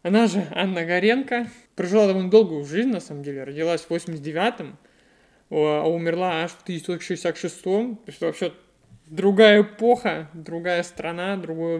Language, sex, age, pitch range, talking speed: Russian, male, 20-39, 155-195 Hz, 135 wpm